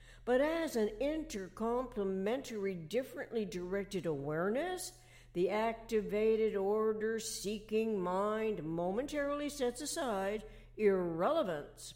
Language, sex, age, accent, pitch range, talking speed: English, female, 60-79, American, 165-230 Hz, 80 wpm